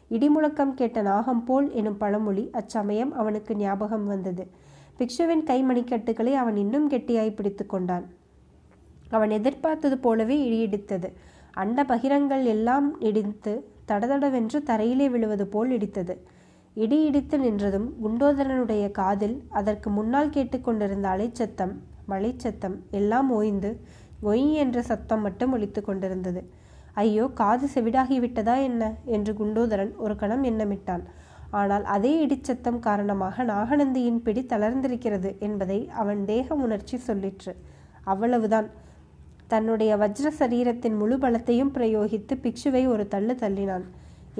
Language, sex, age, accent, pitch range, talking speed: Tamil, female, 20-39, native, 205-255 Hz, 105 wpm